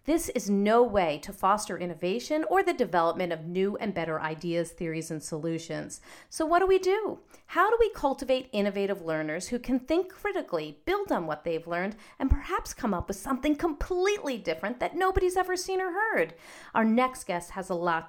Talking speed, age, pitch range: 190 wpm, 40-59, 170-270 Hz